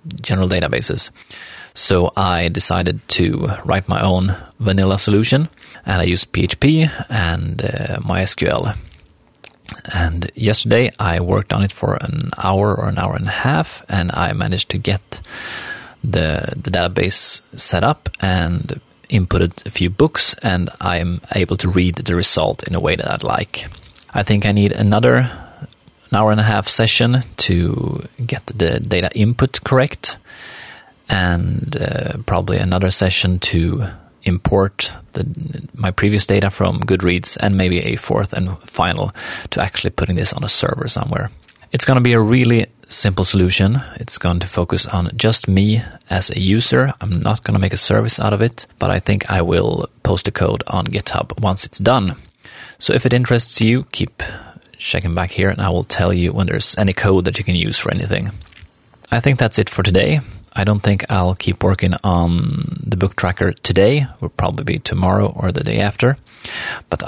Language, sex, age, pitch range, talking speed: Swedish, male, 30-49, 90-115 Hz, 175 wpm